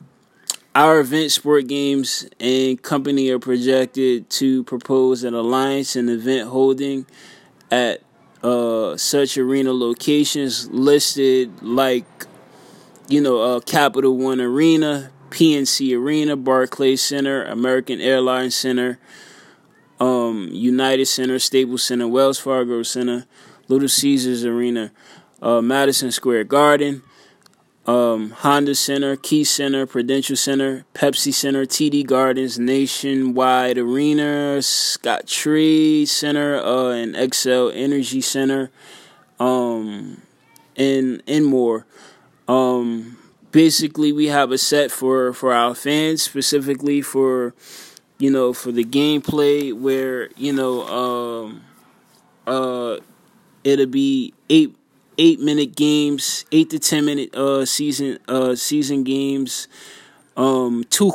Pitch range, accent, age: 125-145 Hz, American, 20-39